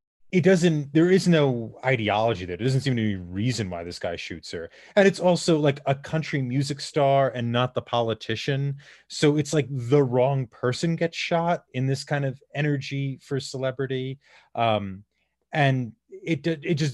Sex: male